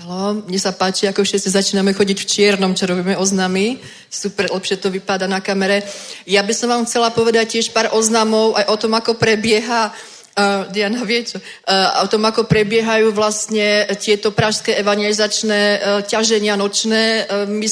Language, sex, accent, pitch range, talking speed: Czech, female, native, 205-220 Hz, 165 wpm